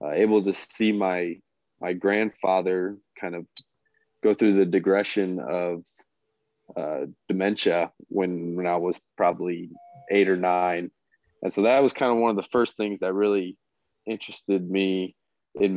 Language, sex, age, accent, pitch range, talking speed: English, male, 20-39, American, 90-105 Hz, 150 wpm